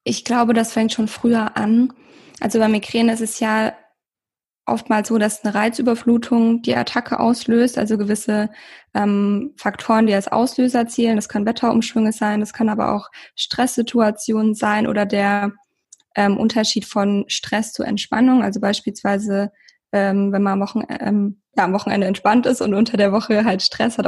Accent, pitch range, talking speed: German, 205-235 Hz, 165 wpm